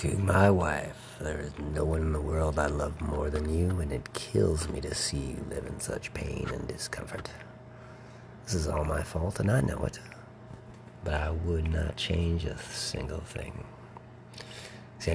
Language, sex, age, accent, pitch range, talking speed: English, male, 40-59, American, 75-115 Hz, 180 wpm